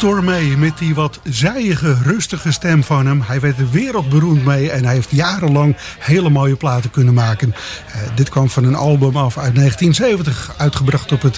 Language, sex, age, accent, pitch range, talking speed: English, male, 50-69, Dutch, 130-150 Hz, 180 wpm